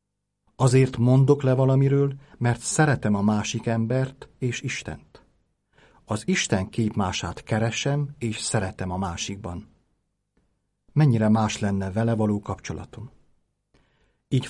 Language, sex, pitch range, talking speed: Hungarian, male, 105-135 Hz, 110 wpm